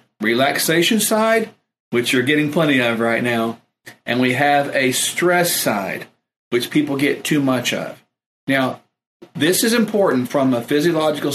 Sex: male